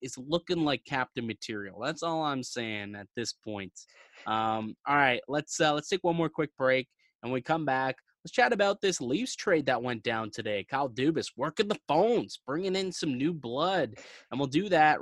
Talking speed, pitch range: 210 wpm, 120-155 Hz